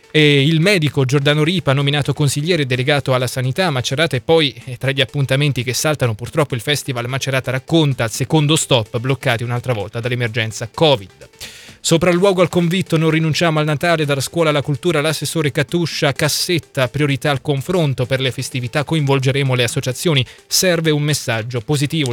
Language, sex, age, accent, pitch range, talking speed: Italian, male, 20-39, native, 130-155 Hz, 170 wpm